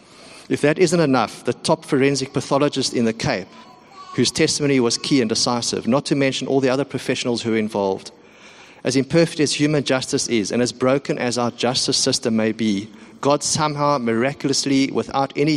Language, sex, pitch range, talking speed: English, male, 120-145 Hz, 180 wpm